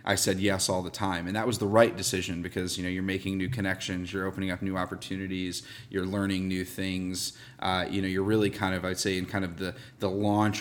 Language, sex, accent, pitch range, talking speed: English, male, American, 95-105 Hz, 245 wpm